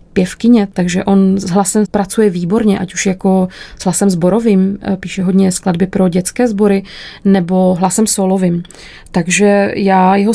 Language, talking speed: Czech, 145 wpm